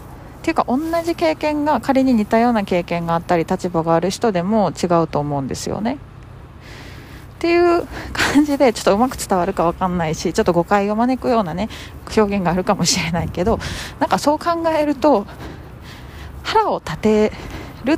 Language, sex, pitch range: Japanese, female, 180-260 Hz